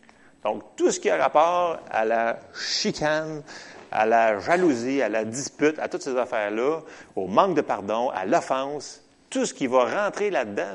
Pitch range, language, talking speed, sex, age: 115-170 Hz, French, 175 wpm, male, 30-49